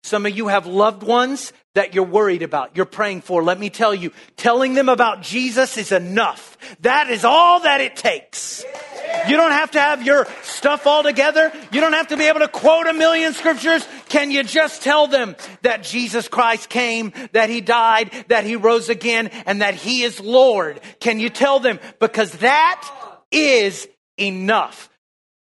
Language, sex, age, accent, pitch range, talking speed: English, male, 40-59, American, 215-295 Hz, 185 wpm